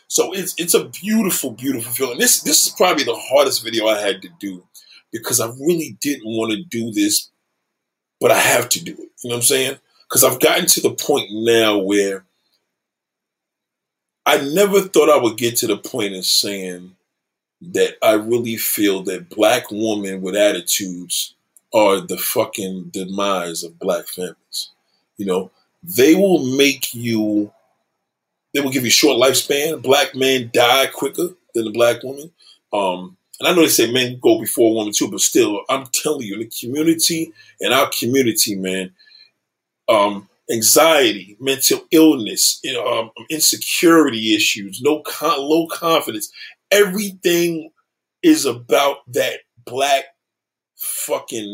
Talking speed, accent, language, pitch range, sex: 155 wpm, American, English, 105-175 Hz, male